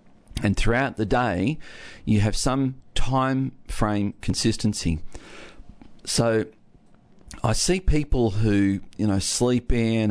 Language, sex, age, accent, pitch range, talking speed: English, male, 40-59, Australian, 95-115 Hz, 115 wpm